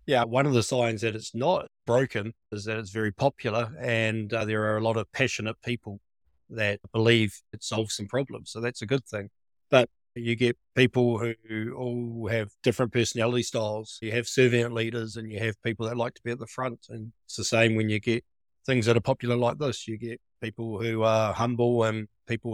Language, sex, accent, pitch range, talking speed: English, male, Australian, 110-125 Hz, 215 wpm